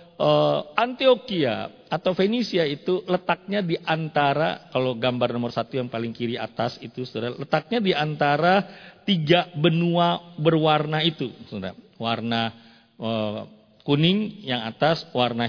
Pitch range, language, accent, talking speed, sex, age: 125-185 Hz, Indonesian, native, 100 wpm, male, 40-59